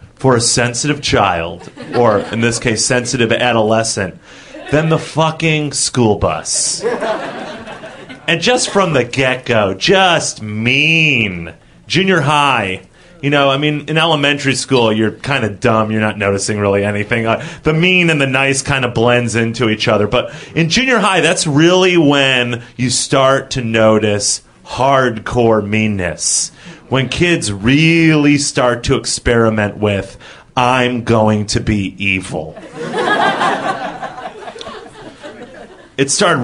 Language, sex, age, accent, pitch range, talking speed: English, male, 30-49, American, 110-150 Hz, 130 wpm